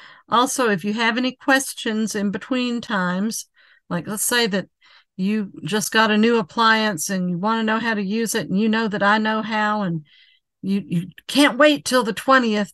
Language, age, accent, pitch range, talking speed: English, 50-69, American, 190-230 Hz, 205 wpm